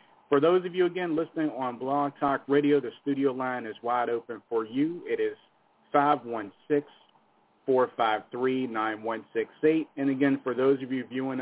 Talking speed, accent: 145 wpm, American